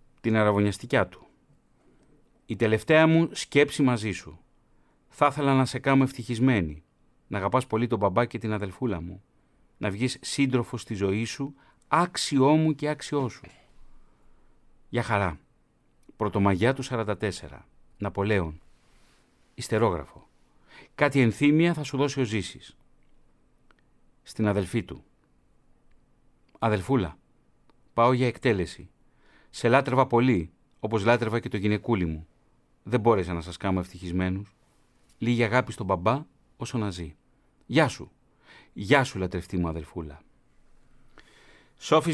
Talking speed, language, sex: 120 wpm, Greek, male